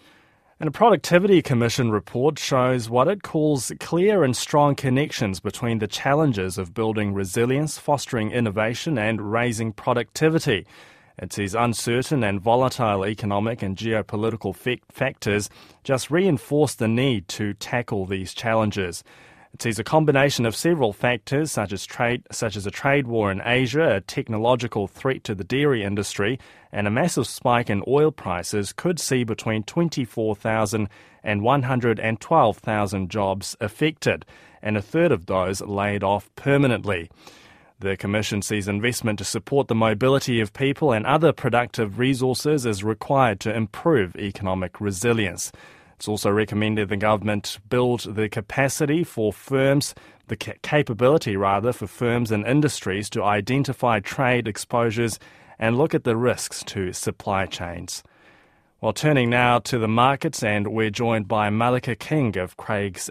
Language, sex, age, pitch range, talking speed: English, male, 20-39, 105-135 Hz, 145 wpm